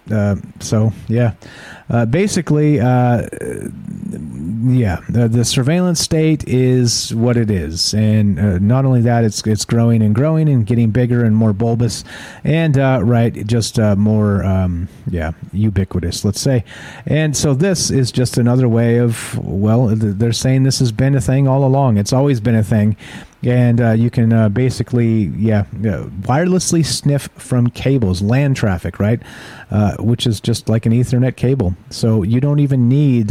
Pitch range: 105-130 Hz